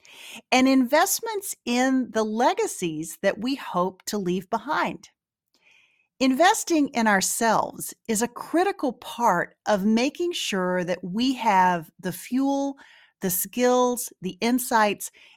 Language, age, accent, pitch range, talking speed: English, 40-59, American, 190-270 Hz, 115 wpm